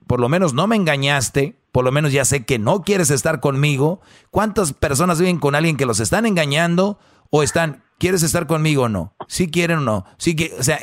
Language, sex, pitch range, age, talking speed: Spanish, male, 130-170 Hz, 40-59, 210 wpm